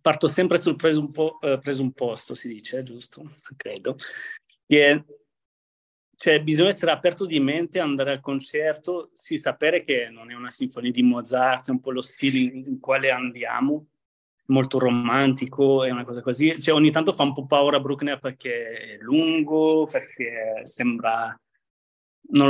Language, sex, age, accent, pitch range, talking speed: Italian, male, 30-49, native, 130-155 Hz, 155 wpm